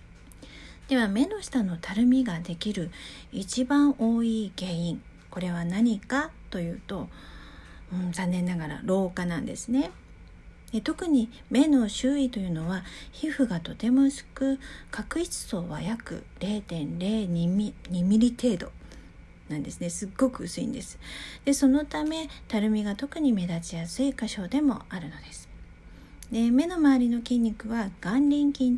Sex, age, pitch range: female, 50-69, 175-275 Hz